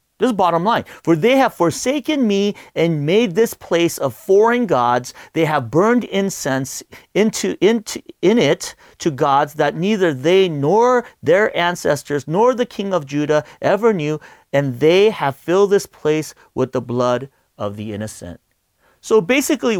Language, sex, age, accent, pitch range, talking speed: English, male, 40-59, American, 165-255 Hz, 160 wpm